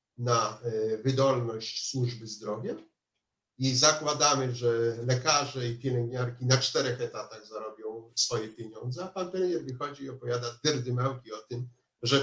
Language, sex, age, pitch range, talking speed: Polish, male, 50-69, 120-150 Hz, 130 wpm